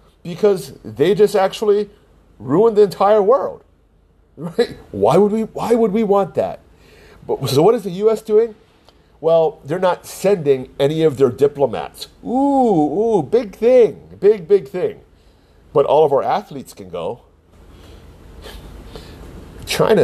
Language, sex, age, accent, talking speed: English, male, 40-59, American, 140 wpm